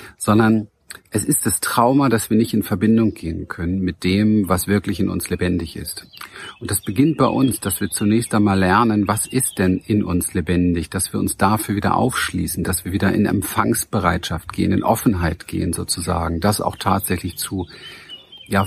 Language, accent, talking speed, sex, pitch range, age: German, German, 185 wpm, male, 95-115 Hz, 50-69